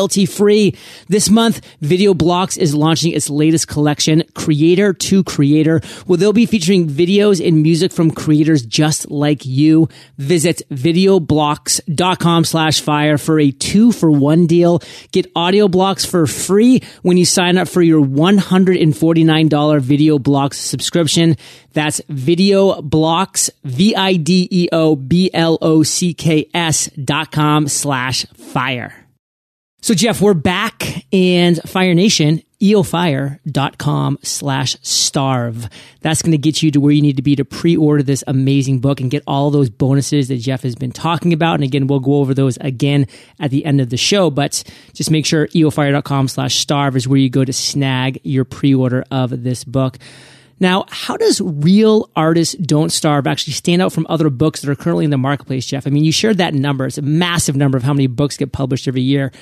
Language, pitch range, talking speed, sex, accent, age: English, 140-175 Hz, 180 wpm, male, American, 30-49